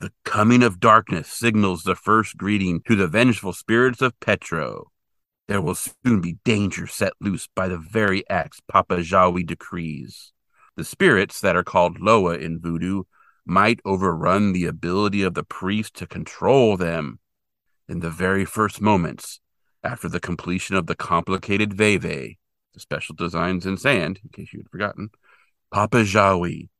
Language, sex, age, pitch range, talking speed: English, male, 40-59, 85-105 Hz, 155 wpm